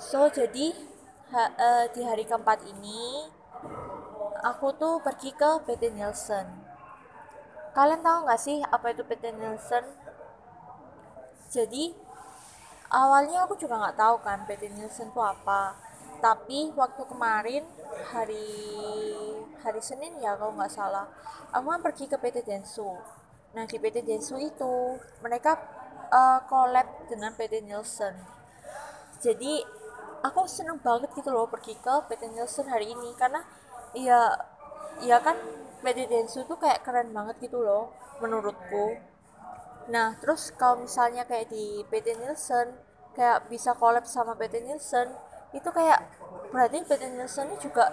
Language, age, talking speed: Indonesian, 20-39, 130 wpm